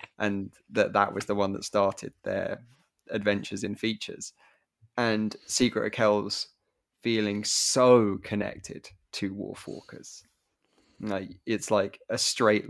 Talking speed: 120 wpm